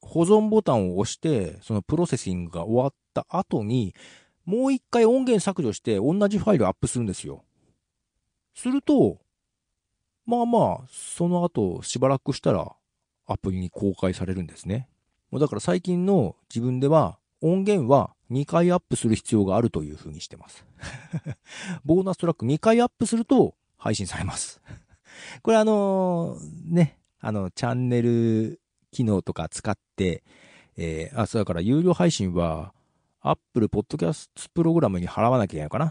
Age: 40-59